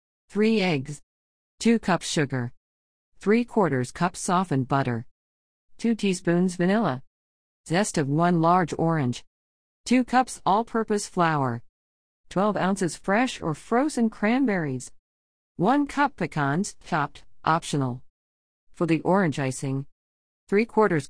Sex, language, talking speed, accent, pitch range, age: female, English, 110 wpm, American, 140-210 Hz, 50-69